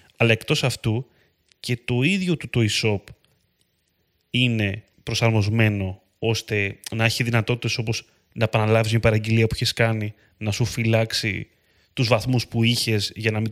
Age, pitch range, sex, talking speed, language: 20-39, 105-140 Hz, male, 145 wpm, Greek